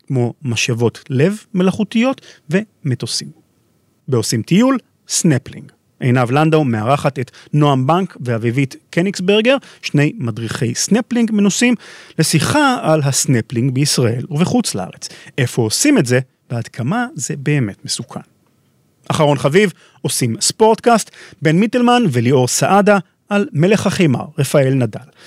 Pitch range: 125-190 Hz